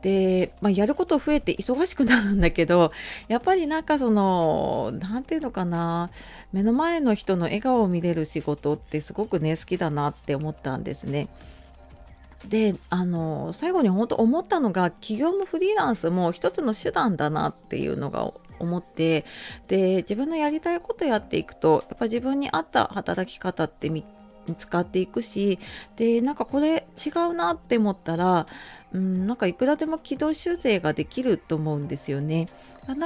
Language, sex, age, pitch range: Japanese, female, 30-49, 165-245 Hz